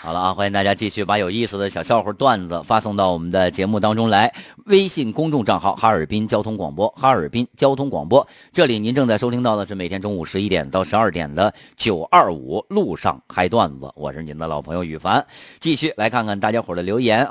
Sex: male